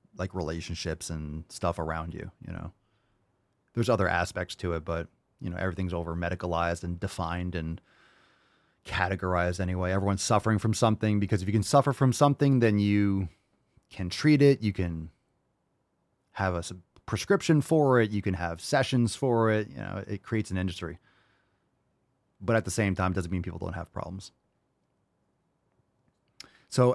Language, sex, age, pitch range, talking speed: English, male, 30-49, 90-120 Hz, 160 wpm